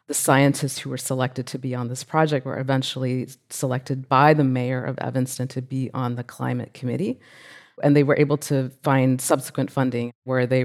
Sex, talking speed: female, 190 wpm